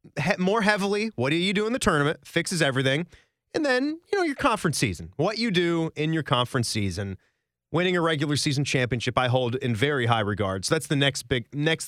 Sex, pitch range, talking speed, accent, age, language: male, 125-195 Hz, 215 wpm, American, 30-49, English